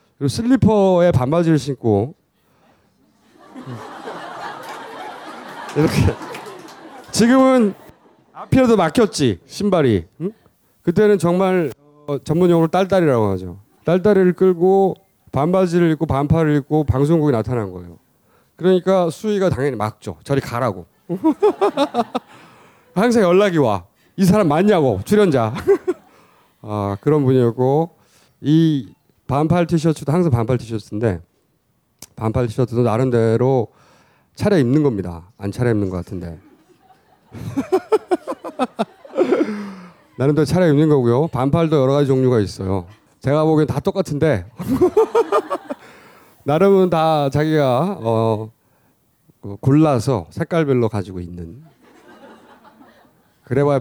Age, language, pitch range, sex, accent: 30-49, Korean, 120-185 Hz, male, native